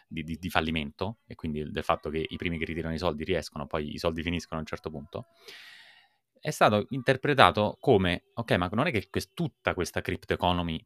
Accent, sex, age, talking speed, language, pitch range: native, male, 20-39, 205 wpm, Italian, 80-100 Hz